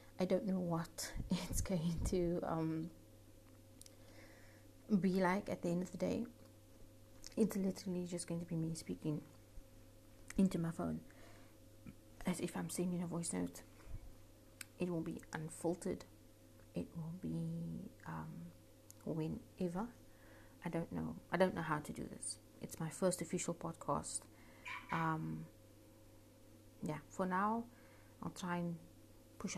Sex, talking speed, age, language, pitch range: female, 135 wpm, 30-49, English, 105-180 Hz